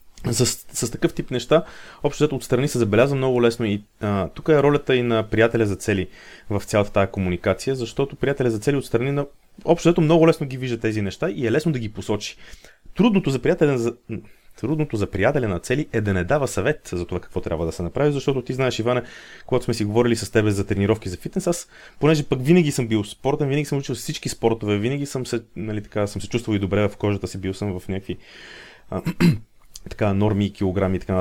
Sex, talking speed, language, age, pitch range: male, 220 wpm, Bulgarian, 30-49, 100-130 Hz